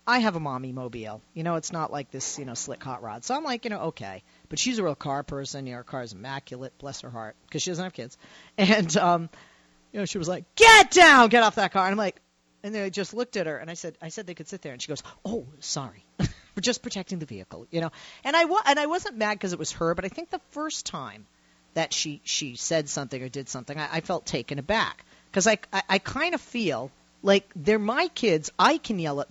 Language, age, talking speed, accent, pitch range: English, 40-59, 260 wpm, American, 150-230 Hz